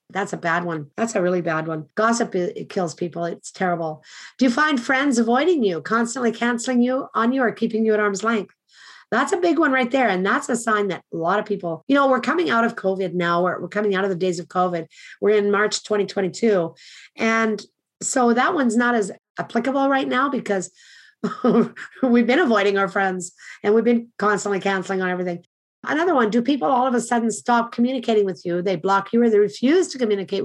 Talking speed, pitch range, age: 215 wpm, 195-240 Hz, 50-69